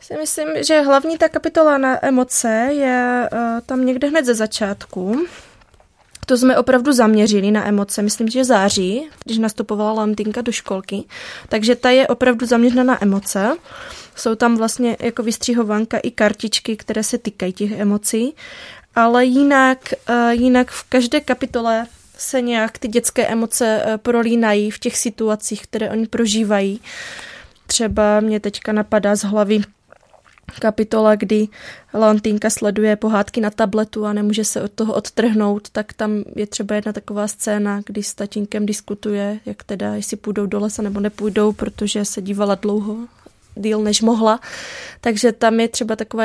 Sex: female